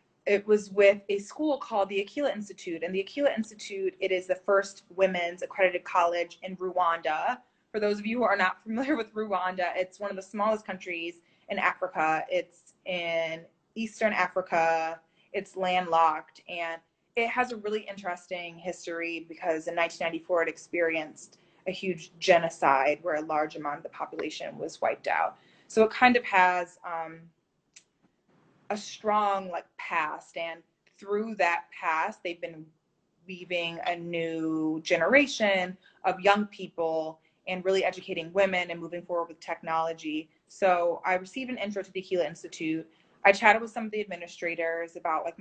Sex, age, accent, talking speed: female, 20-39, American, 160 wpm